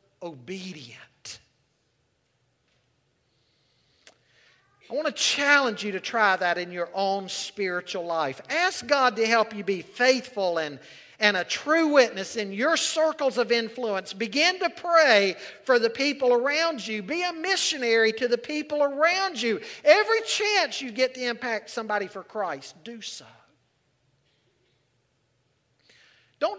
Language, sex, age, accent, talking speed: English, male, 50-69, American, 135 wpm